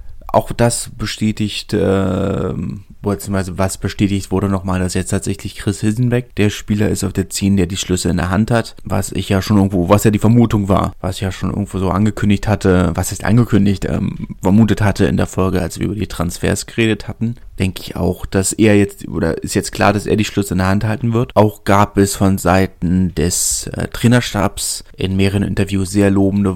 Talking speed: 210 wpm